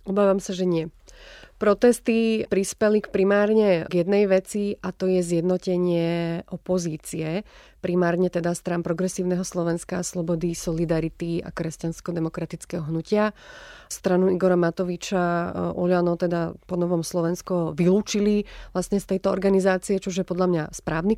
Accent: native